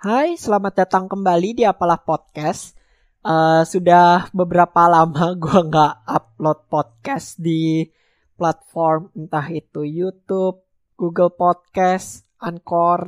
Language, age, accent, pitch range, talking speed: Indonesian, 20-39, native, 160-195 Hz, 105 wpm